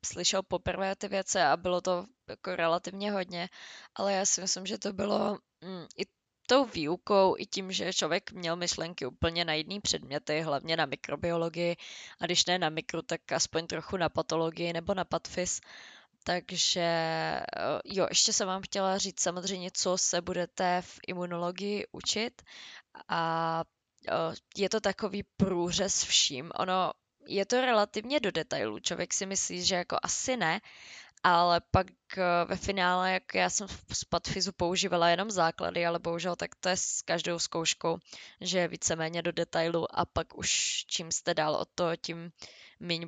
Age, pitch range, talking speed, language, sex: 20-39, 165-190 Hz, 165 wpm, Czech, female